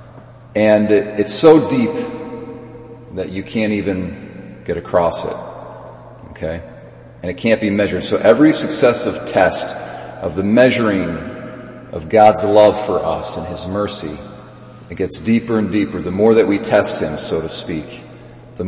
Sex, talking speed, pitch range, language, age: male, 150 wpm, 95-115 Hz, English, 40-59